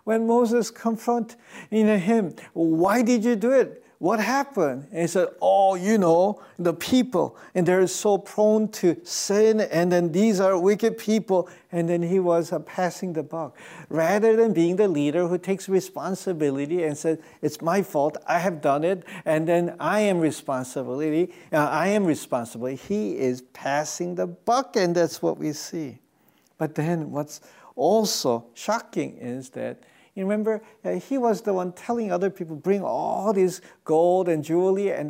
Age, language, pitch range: 50-69, English, 160-200 Hz